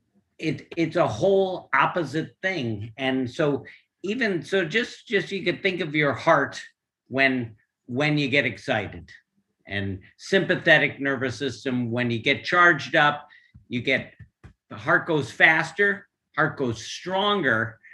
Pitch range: 115-155 Hz